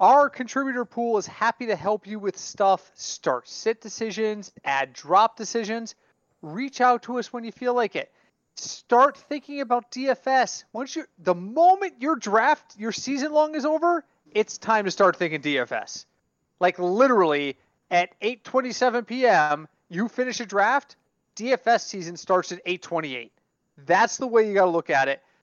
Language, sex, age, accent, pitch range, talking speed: English, male, 30-49, American, 175-245 Hz, 165 wpm